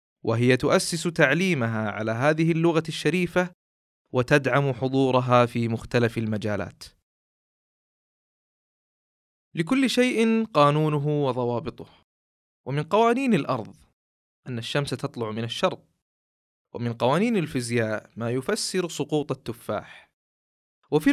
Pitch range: 110-175 Hz